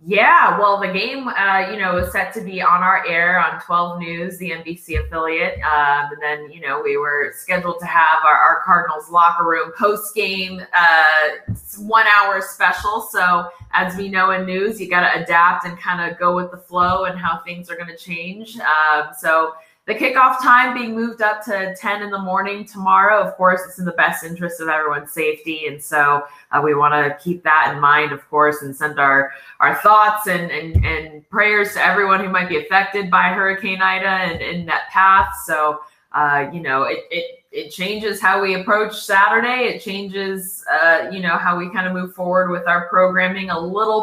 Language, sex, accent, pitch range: English, female, American, 165-200 Hz